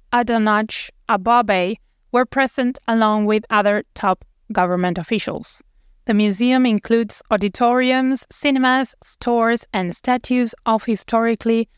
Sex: female